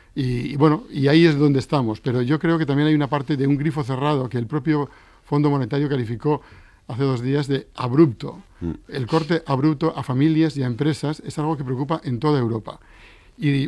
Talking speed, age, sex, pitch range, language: 205 wpm, 50-69, male, 130-150 Hz, Spanish